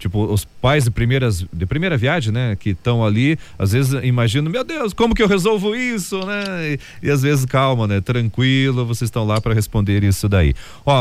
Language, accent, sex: Portuguese, Brazilian, male